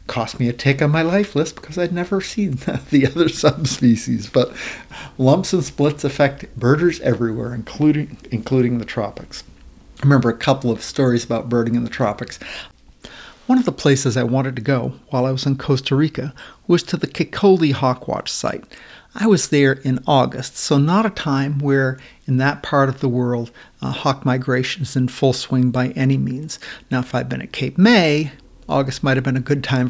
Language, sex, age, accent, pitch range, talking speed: English, male, 60-79, American, 125-150 Hz, 195 wpm